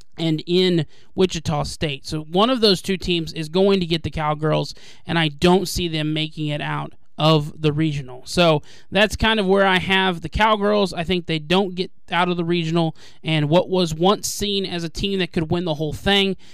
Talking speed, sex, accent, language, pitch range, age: 215 wpm, male, American, English, 160-185 Hz, 20-39